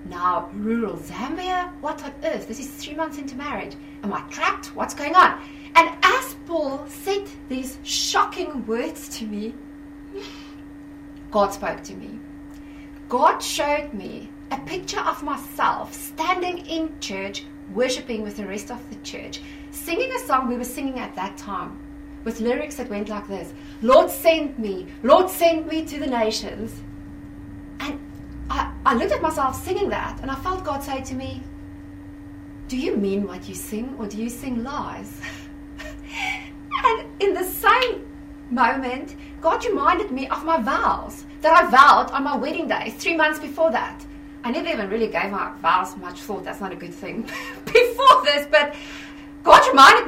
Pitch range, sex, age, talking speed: 245-315 Hz, female, 30-49, 165 wpm